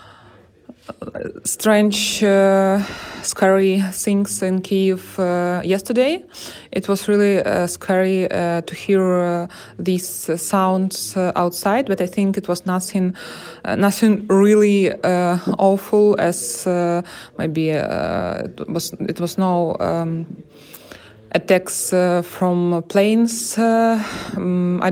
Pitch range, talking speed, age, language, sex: 175-205 Hz, 120 wpm, 20-39, Ukrainian, female